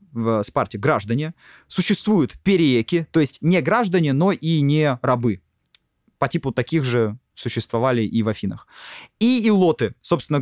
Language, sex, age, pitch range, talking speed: Russian, male, 20-39, 115-160 Hz, 140 wpm